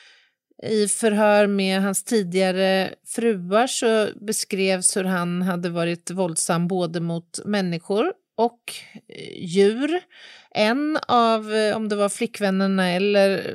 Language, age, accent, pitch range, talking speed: Swedish, 30-49, native, 175-215 Hz, 110 wpm